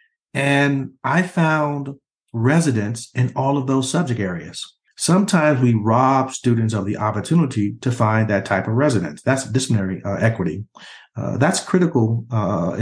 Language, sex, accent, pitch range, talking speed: English, male, American, 105-140 Hz, 145 wpm